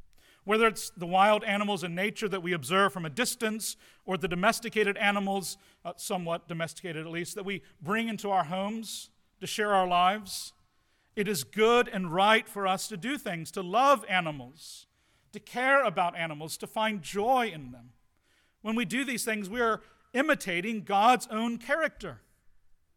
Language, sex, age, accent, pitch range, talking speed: English, male, 40-59, American, 180-225 Hz, 170 wpm